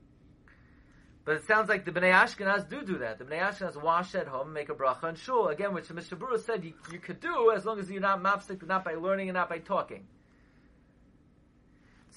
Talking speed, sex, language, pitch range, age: 215 wpm, male, English, 170-220 Hz, 30-49